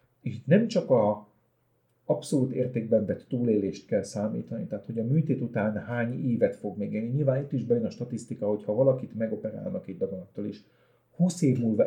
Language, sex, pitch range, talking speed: Hungarian, male, 110-150 Hz, 180 wpm